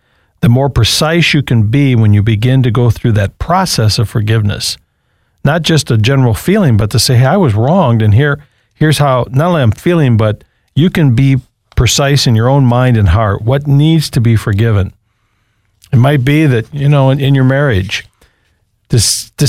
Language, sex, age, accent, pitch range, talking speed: English, male, 50-69, American, 110-145 Hz, 195 wpm